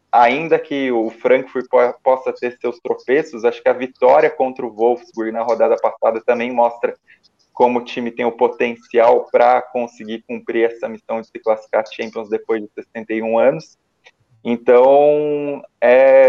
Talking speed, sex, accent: 150 wpm, male, Brazilian